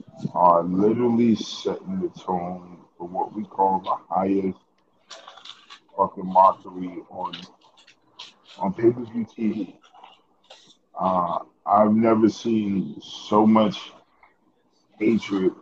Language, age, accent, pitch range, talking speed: English, 20-39, American, 95-110 Hz, 105 wpm